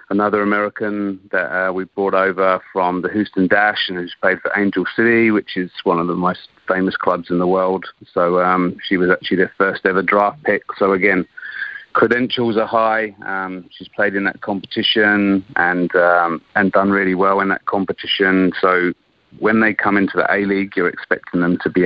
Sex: male